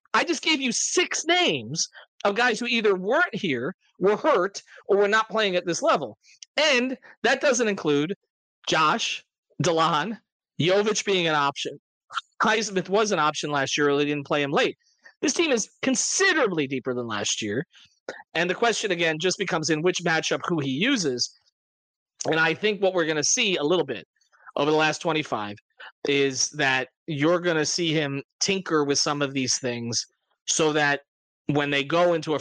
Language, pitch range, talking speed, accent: English, 145-195 Hz, 185 wpm, American